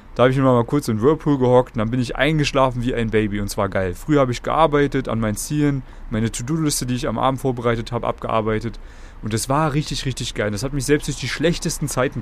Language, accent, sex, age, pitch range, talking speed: German, German, male, 30-49, 110-150 Hz, 245 wpm